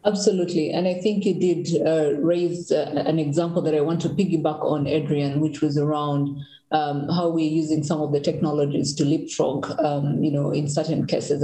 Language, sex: English, female